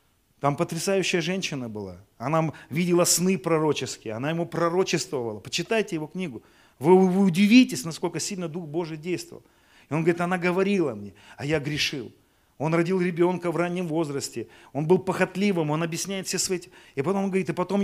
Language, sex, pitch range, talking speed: Russian, male, 140-195 Hz, 165 wpm